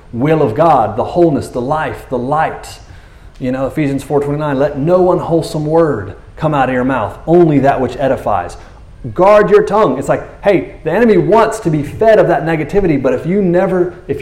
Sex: male